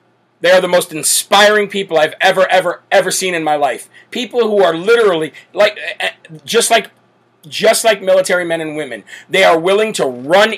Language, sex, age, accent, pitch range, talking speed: English, male, 40-59, American, 165-200 Hz, 180 wpm